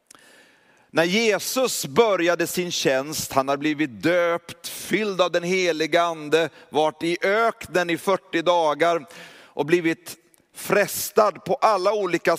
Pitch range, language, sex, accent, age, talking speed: 170-220 Hz, Swedish, male, native, 30-49, 125 wpm